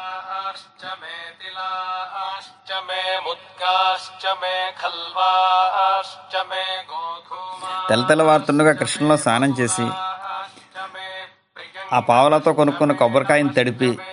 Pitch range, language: 130-185 Hz, Telugu